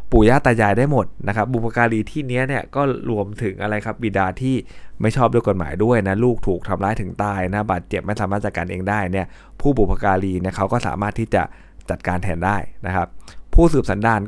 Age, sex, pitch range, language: 20-39, male, 95-115 Hz, Thai